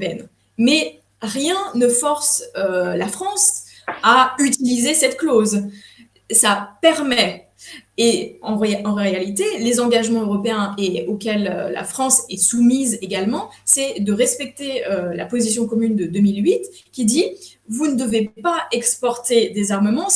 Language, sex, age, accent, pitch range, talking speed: French, female, 20-39, French, 205-265 Hz, 145 wpm